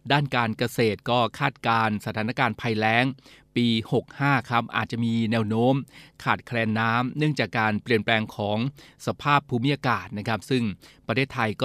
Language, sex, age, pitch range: Thai, male, 20-39, 110-130 Hz